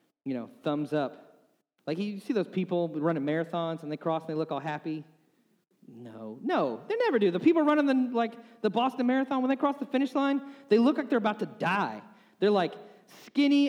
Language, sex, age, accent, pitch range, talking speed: English, male, 30-49, American, 190-255 Hz, 205 wpm